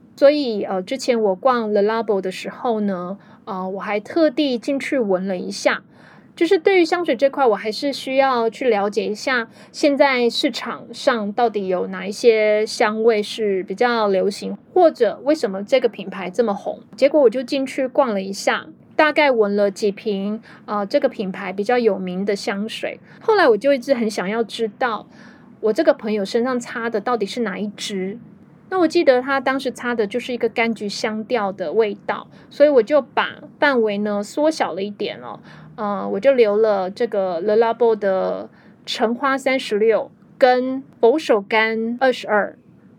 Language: Chinese